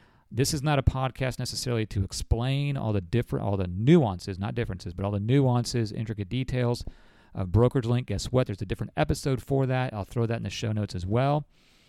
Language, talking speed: English, 210 wpm